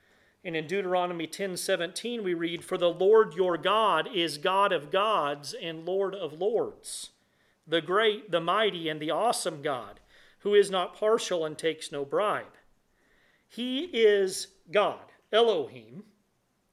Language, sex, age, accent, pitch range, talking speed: English, male, 40-59, American, 160-210 Hz, 145 wpm